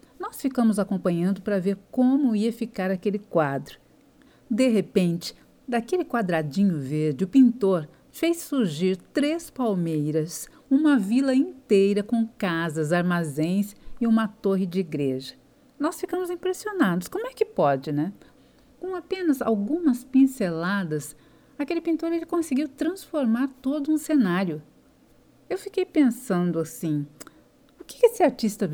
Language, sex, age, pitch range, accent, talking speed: Portuguese, female, 50-69, 190-275 Hz, Brazilian, 125 wpm